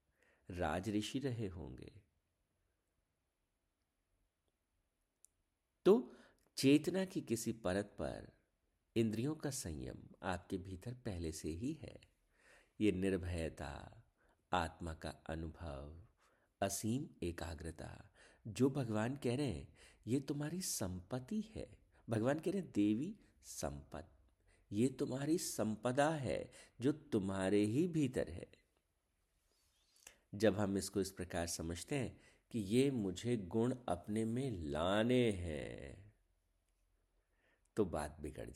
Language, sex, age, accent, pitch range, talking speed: Hindi, male, 50-69, native, 85-120 Hz, 105 wpm